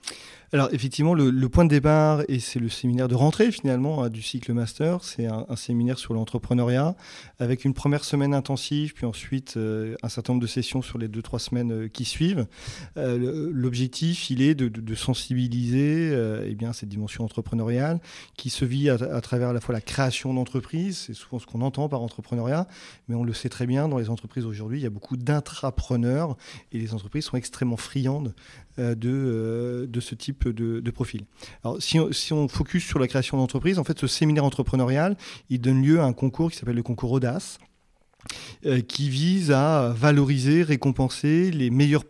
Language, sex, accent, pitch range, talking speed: French, male, French, 120-145 Hz, 200 wpm